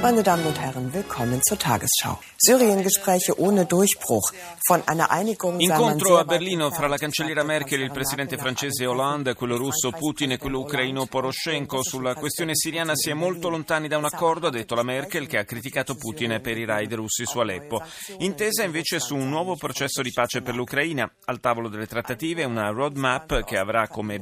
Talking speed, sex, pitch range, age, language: 180 wpm, male, 120-155 Hz, 30-49, Italian